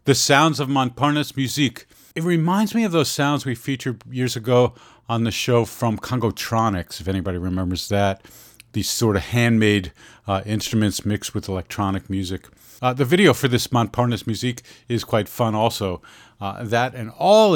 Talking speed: 165 wpm